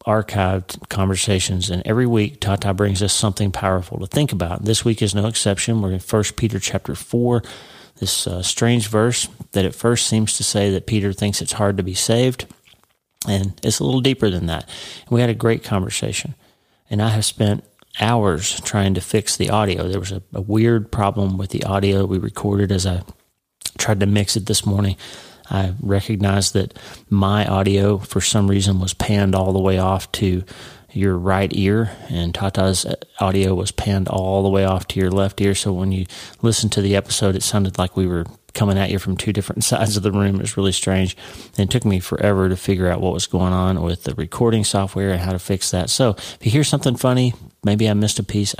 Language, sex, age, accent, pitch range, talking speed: English, male, 40-59, American, 95-110 Hz, 210 wpm